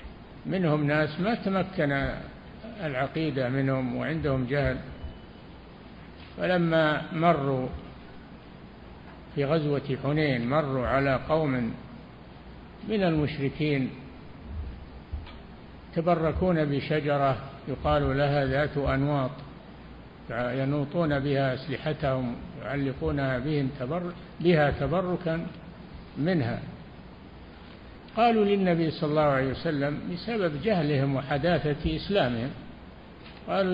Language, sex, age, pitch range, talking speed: Arabic, male, 60-79, 135-170 Hz, 80 wpm